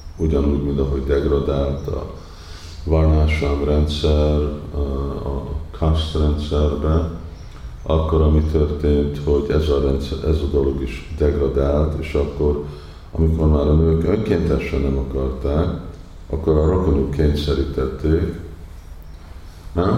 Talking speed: 110 wpm